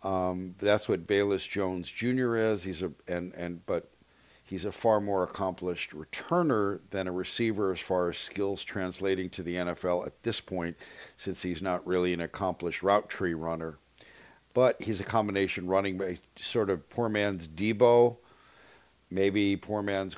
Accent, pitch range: American, 90-110 Hz